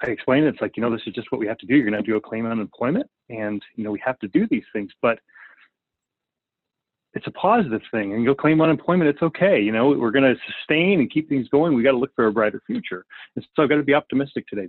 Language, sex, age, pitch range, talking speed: English, male, 30-49, 110-140 Hz, 275 wpm